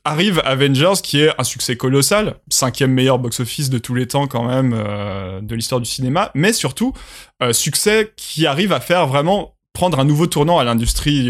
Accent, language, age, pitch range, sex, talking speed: French, French, 20-39, 125-170 Hz, male, 190 wpm